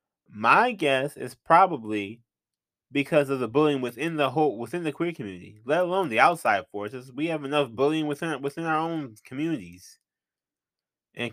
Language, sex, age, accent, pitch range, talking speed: English, male, 20-39, American, 100-145 Hz, 160 wpm